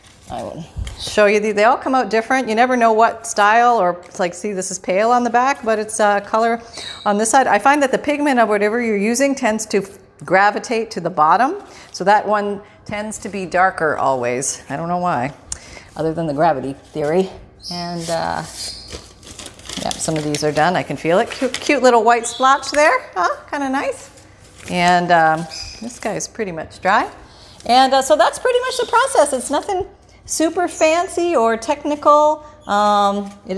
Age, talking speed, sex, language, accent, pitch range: 40-59, 195 wpm, female, English, American, 160-245 Hz